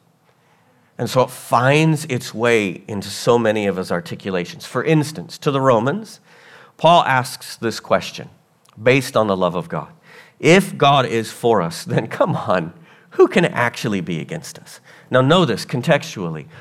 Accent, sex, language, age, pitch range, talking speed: American, male, English, 50-69, 120-170 Hz, 165 wpm